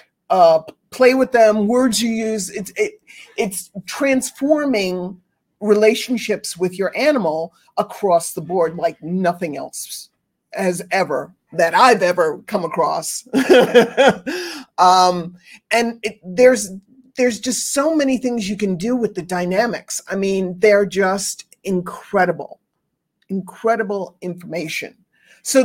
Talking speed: 115 wpm